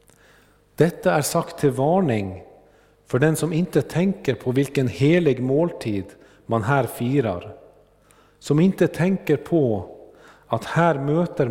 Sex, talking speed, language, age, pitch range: male, 125 wpm, Swedish, 50-69, 125-170 Hz